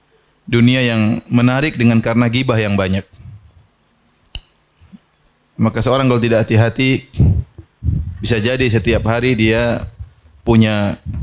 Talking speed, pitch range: 100 wpm, 100-120 Hz